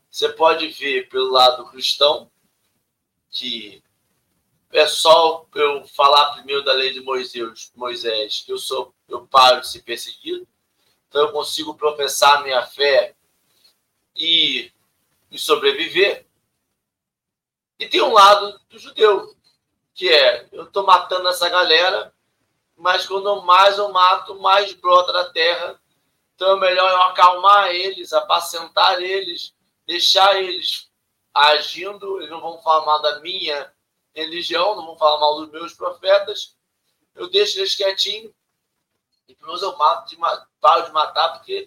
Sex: male